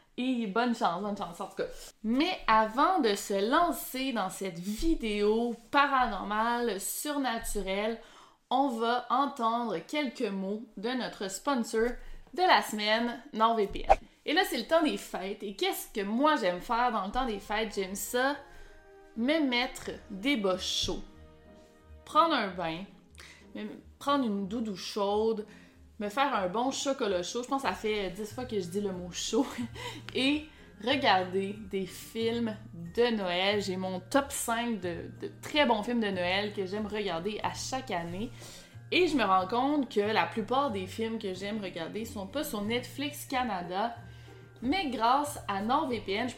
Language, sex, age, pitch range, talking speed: French, female, 20-39, 195-255 Hz, 165 wpm